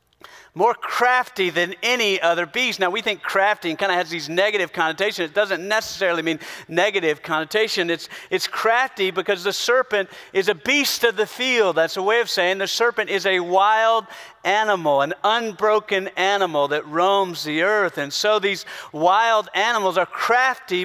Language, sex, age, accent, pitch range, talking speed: English, male, 40-59, American, 160-215 Hz, 170 wpm